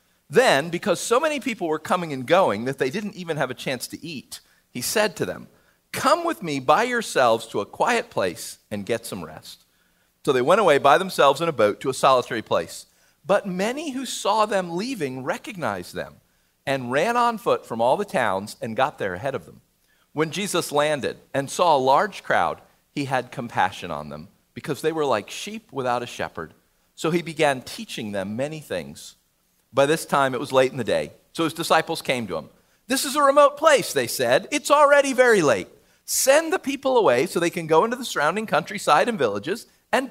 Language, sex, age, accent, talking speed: English, male, 50-69, American, 210 wpm